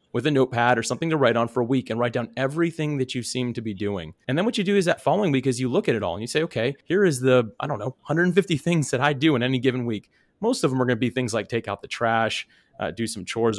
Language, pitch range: English, 115-145 Hz